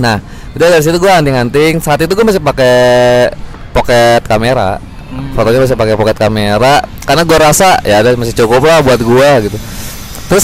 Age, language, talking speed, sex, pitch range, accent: 20-39, Indonesian, 180 wpm, male, 120-150 Hz, native